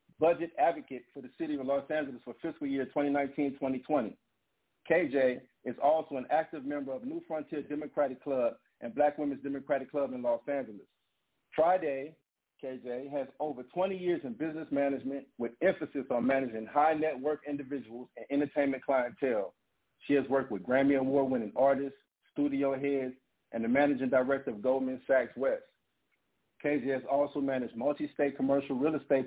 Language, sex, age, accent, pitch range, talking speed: English, male, 50-69, American, 135-150 Hz, 150 wpm